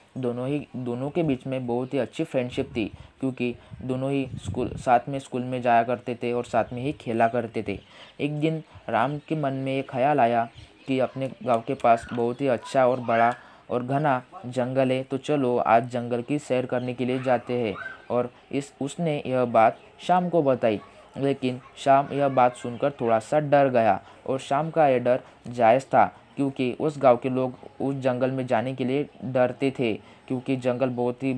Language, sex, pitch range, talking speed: Hindi, male, 120-135 Hz, 200 wpm